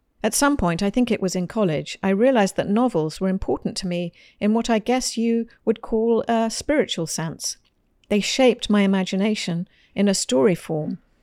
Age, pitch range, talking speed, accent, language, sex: 50-69, 190-235 Hz, 185 wpm, British, English, female